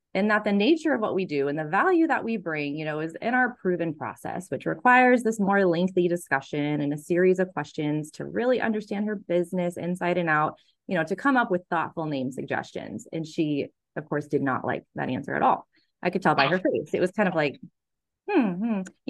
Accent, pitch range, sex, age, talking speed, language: American, 150-220 Hz, female, 20-39, 230 wpm, English